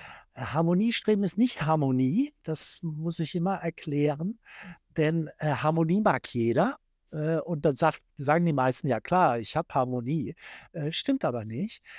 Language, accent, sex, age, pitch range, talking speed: German, German, male, 60-79, 140-180 Hz, 150 wpm